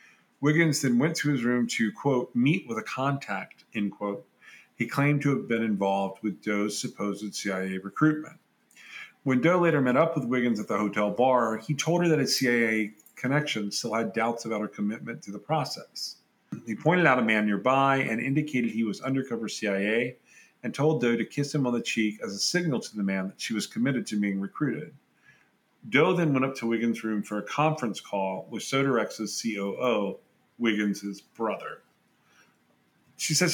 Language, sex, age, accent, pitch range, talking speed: English, male, 40-59, American, 105-145 Hz, 185 wpm